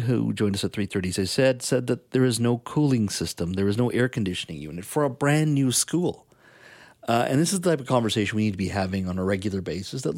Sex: male